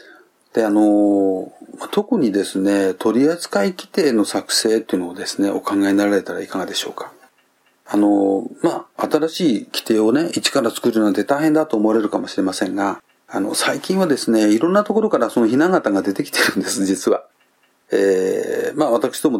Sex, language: male, Japanese